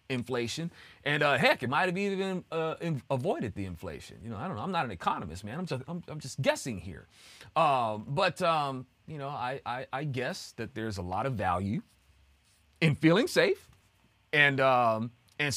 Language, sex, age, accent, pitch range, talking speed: English, male, 30-49, American, 105-165 Hz, 190 wpm